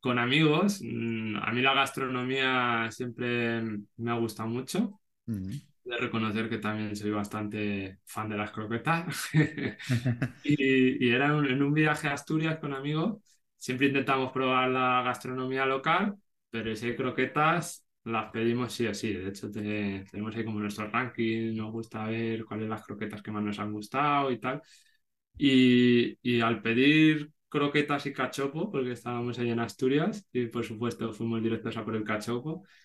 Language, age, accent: Spanish, 20-39, Spanish